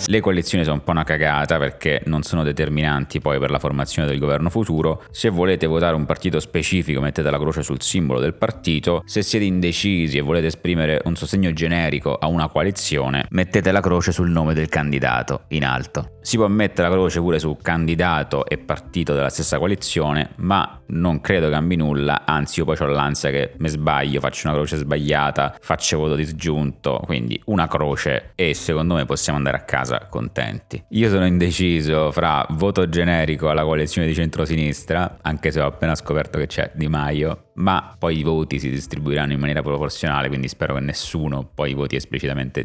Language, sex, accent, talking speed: Italian, male, native, 185 wpm